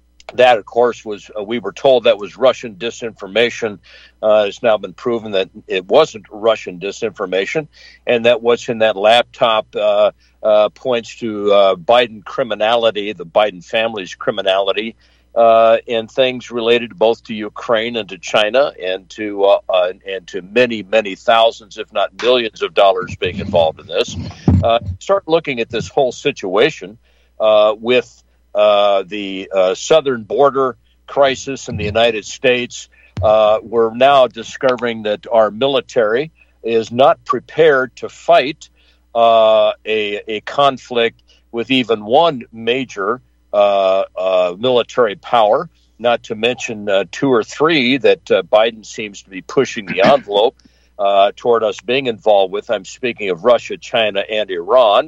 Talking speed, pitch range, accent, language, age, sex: 150 wpm, 100-125 Hz, American, English, 50-69, male